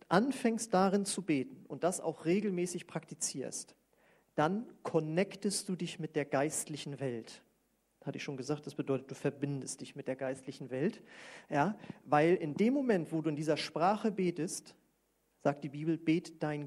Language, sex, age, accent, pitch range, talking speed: German, male, 40-59, German, 145-180 Hz, 165 wpm